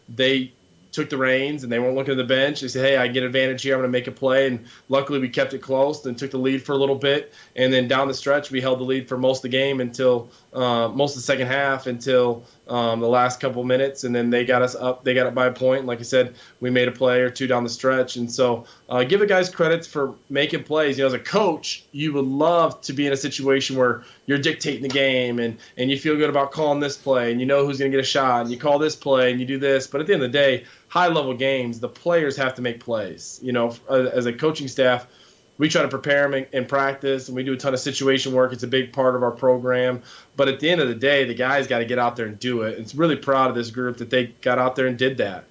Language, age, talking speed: English, 20-39, 290 wpm